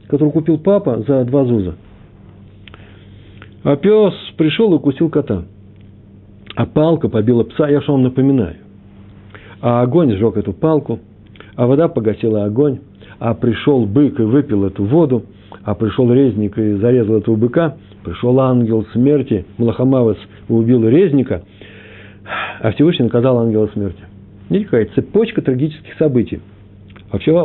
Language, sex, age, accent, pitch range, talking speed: Russian, male, 60-79, native, 100-135 Hz, 130 wpm